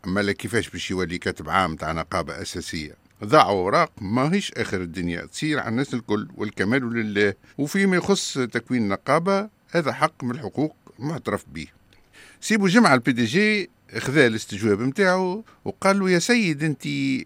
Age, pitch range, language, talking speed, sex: 50-69, 105-155 Hz, Arabic, 150 wpm, male